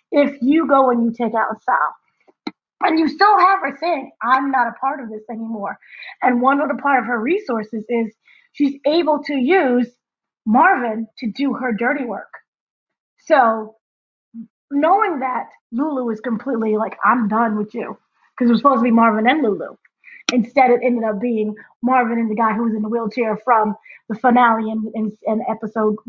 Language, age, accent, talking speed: English, 20-39, American, 185 wpm